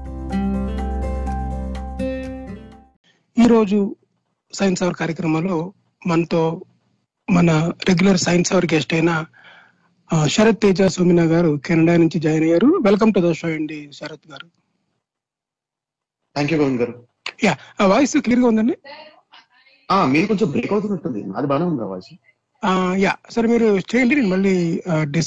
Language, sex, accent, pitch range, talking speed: Telugu, male, native, 165-205 Hz, 35 wpm